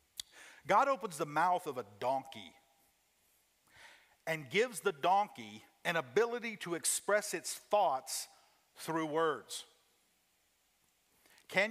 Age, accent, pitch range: 50-69, American, 150-210 Hz